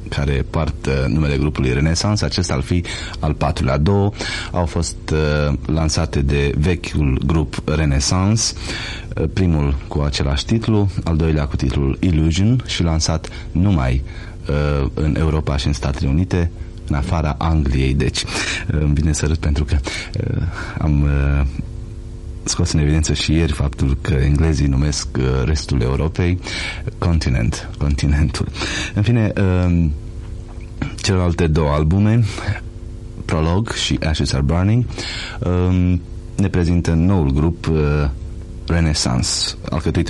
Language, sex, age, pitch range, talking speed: Romanian, male, 30-49, 75-90 Hz, 125 wpm